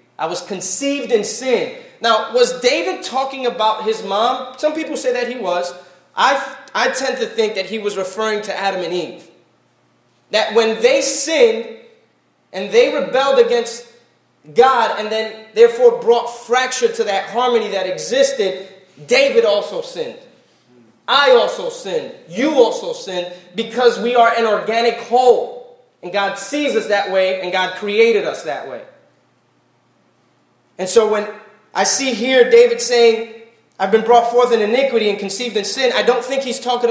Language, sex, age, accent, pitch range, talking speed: English, male, 20-39, American, 195-260 Hz, 160 wpm